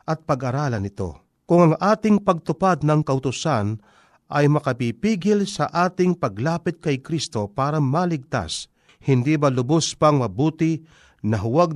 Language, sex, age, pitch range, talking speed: Filipino, male, 40-59, 130-170 Hz, 130 wpm